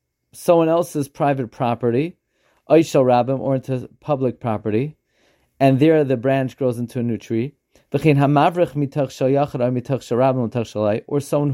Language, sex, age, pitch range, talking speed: English, male, 30-49, 120-150 Hz, 100 wpm